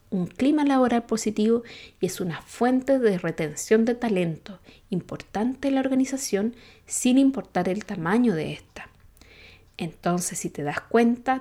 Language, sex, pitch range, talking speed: Spanish, female, 175-250 Hz, 140 wpm